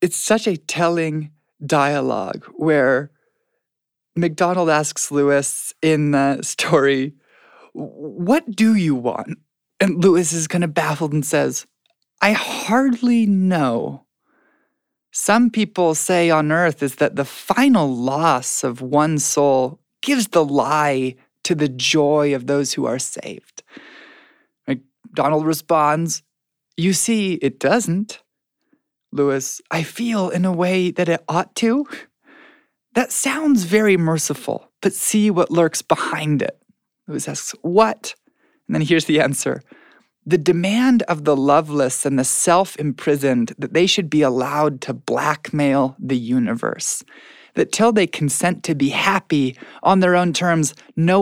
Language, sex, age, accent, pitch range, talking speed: English, male, 20-39, American, 145-195 Hz, 135 wpm